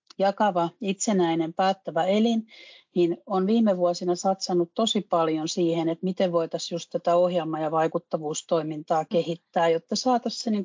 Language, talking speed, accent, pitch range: Finnish, 130 wpm, native, 165-200 Hz